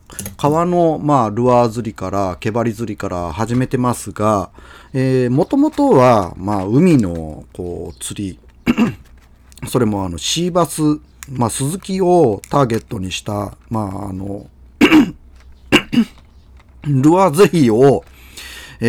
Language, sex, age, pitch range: Japanese, male, 40-59, 95-150 Hz